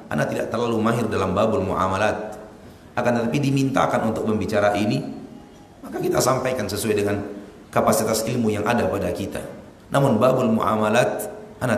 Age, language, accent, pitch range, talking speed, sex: 30-49, Indonesian, native, 100-120 Hz, 145 wpm, male